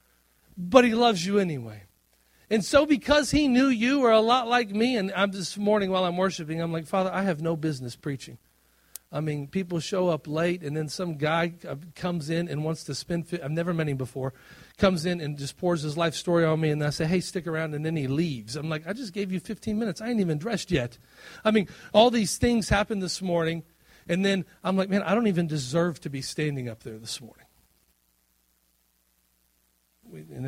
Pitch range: 130-220 Hz